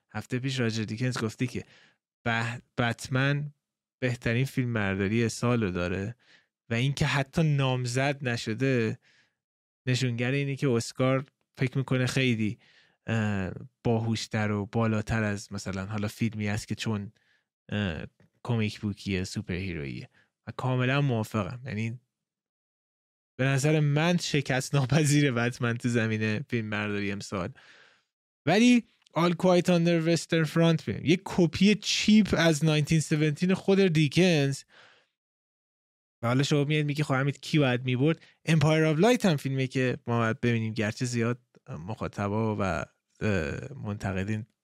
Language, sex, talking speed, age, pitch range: Persian, male, 115 wpm, 20-39, 110-150 Hz